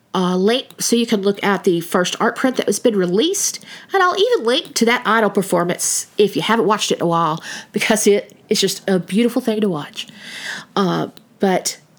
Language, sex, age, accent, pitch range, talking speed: English, female, 40-59, American, 195-260 Hz, 210 wpm